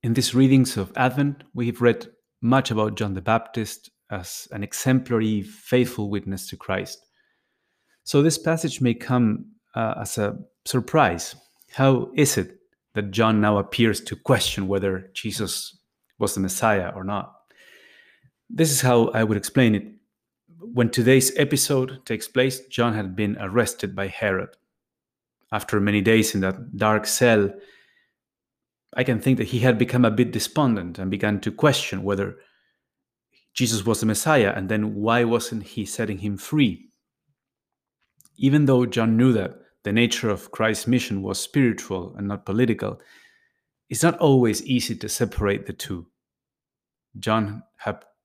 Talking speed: 150 wpm